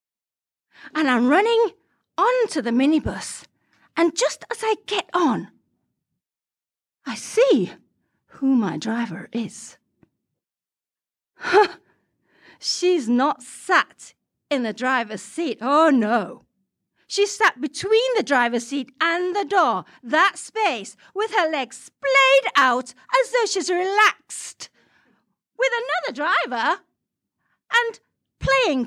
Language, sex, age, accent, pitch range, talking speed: English, female, 40-59, British, 235-360 Hz, 110 wpm